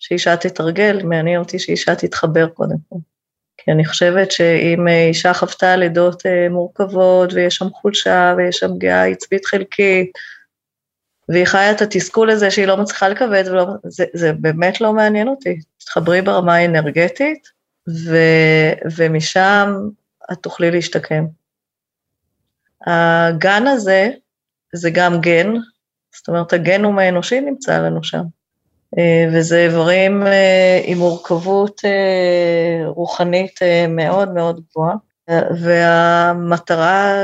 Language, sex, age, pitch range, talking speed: Hebrew, female, 20-39, 170-195 Hz, 110 wpm